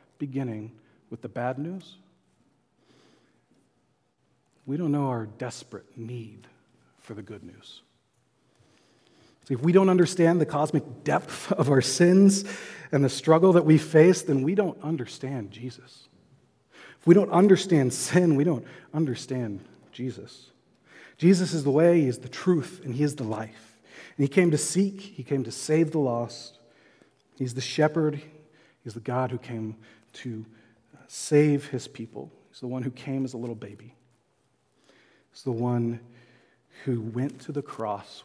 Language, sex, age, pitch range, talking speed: English, male, 40-59, 120-155 Hz, 155 wpm